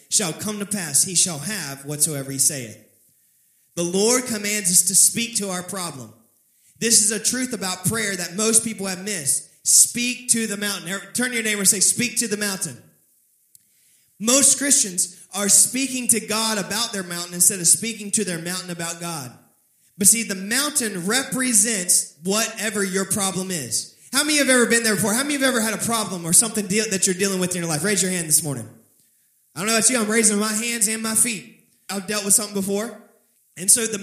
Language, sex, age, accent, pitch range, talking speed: English, male, 20-39, American, 185-235 Hz, 215 wpm